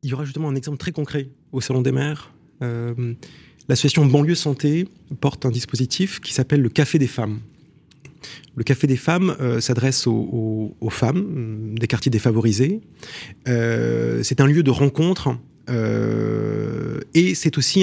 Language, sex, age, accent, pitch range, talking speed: French, male, 30-49, French, 120-150 Hz, 160 wpm